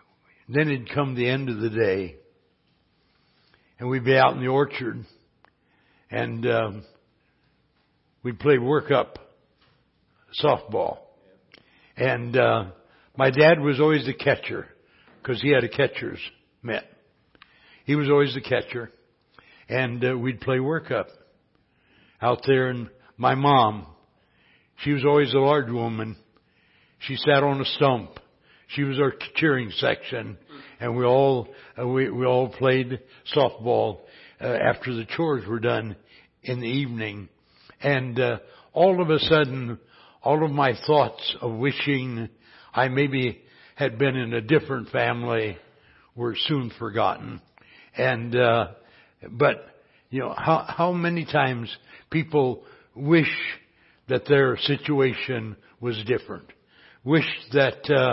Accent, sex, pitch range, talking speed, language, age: American, male, 115-140 Hz, 130 wpm, English, 60-79